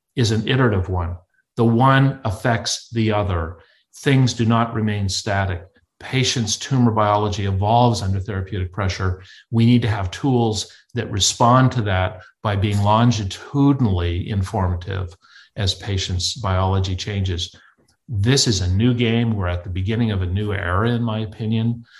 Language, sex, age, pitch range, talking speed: English, male, 50-69, 95-115 Hz, 145 wpm